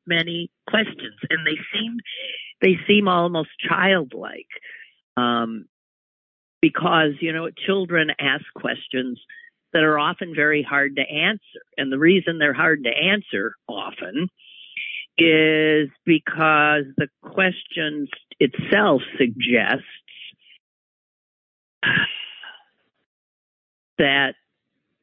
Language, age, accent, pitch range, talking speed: English, 50-69, American, 140-190 Hz, 90 wpm